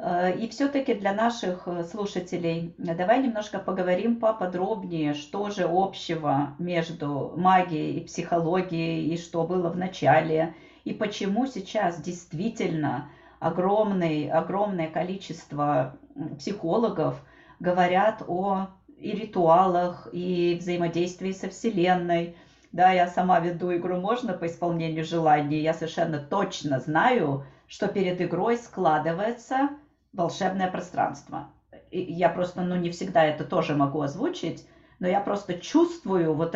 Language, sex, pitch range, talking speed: Russian, female, 160-195 Hz, 115 wpm